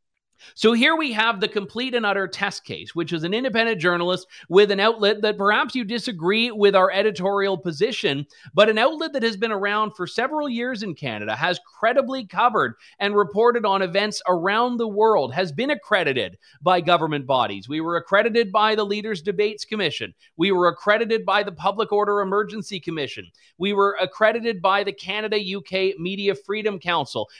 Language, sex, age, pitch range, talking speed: English, male, 40-59, 180-220 Hz, 175 wpm